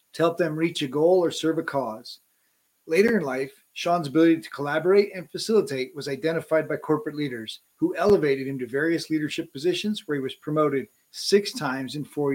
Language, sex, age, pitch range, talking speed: English, male, 40-59, 145-185 Hz, 190 wpm